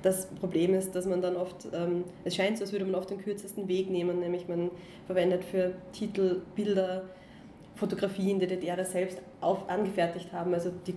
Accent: German